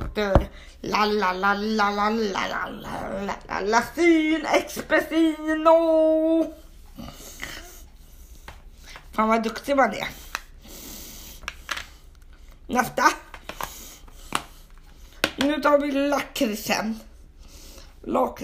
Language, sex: Swedish, female